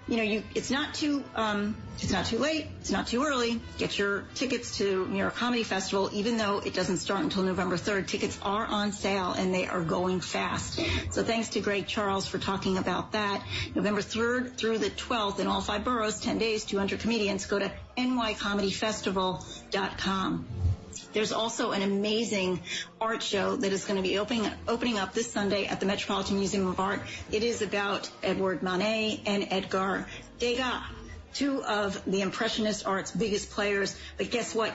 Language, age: English, 40-59